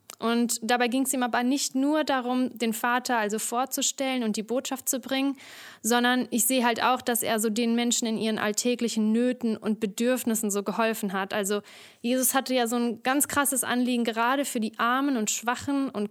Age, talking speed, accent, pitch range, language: 20-39, 195 wpm, German, 220-255 Hz, German